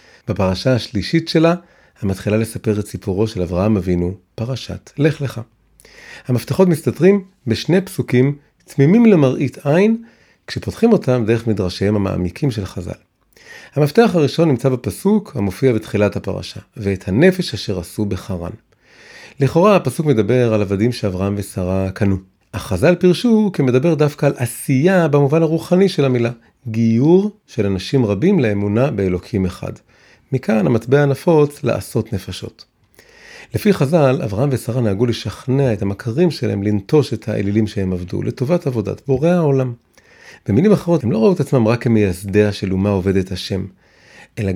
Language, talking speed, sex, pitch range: Hebrew, 135 wpm, male, 105-150 Hz